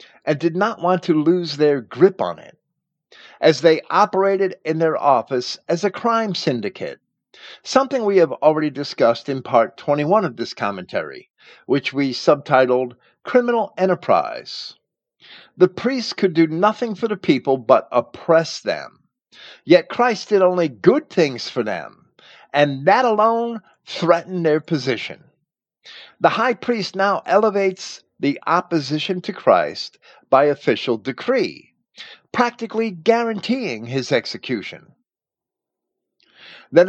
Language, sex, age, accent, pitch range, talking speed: English, male, 50-69, American, 150-225 Hz, 125 wpm